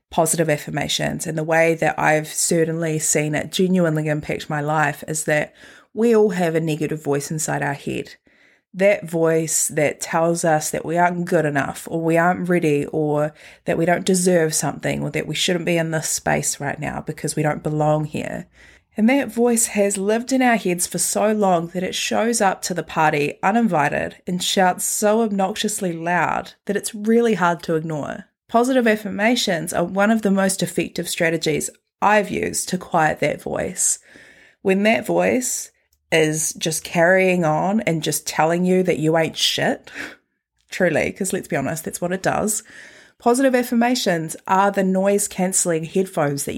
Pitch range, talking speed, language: 155-200 Hz, 175 wpm, English